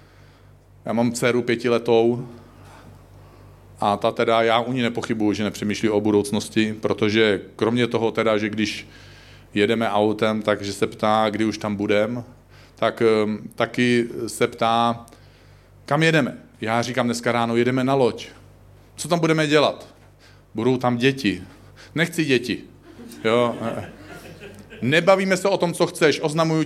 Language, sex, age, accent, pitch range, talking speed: Czech, male, 40-59, native, 110-140 Hz, 135 wpm